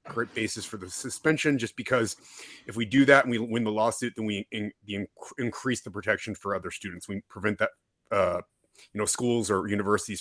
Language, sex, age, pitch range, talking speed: English, male, 30-49, 100-130 Hz, 195 wpm